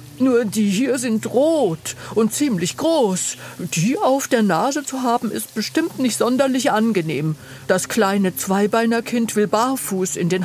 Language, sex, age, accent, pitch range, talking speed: German, female, 50-69, German, 180-260 Hz, 150 wpm